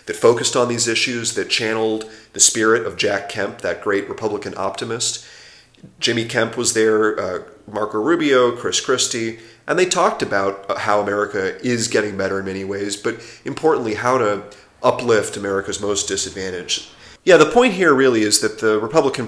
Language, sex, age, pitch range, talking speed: English, male, 30-49, 100-125 Hz, 170 wpm